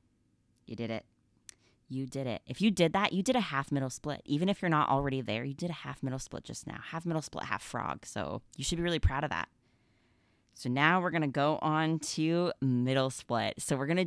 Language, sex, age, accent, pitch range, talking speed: English, female, 20-39, American, 120-155 Hz, 235 wpm